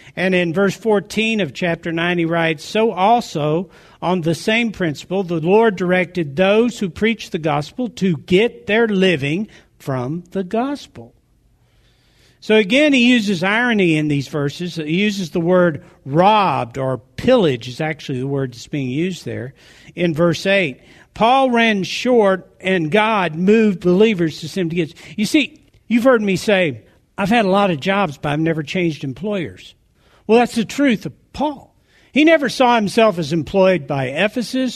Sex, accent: male, American